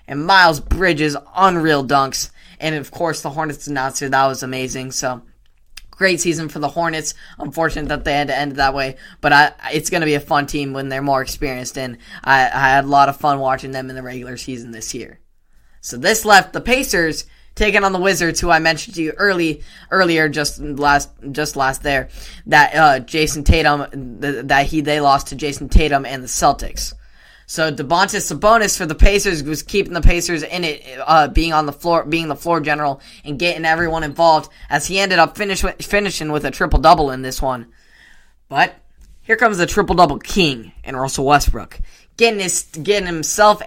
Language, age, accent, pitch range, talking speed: English, 10-29, American, 140-180 Hz, 200 wpm